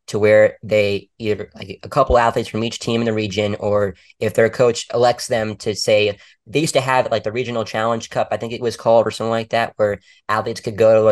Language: English